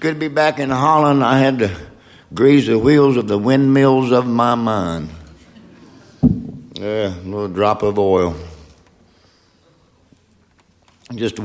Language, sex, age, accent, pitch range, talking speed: Dutch, male, 60-79, American, 85-105 Hz, 125 wpm